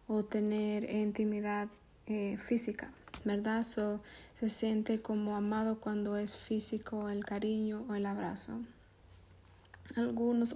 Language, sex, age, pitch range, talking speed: English, female, 20-39, 210-225 Hz, 120 wpm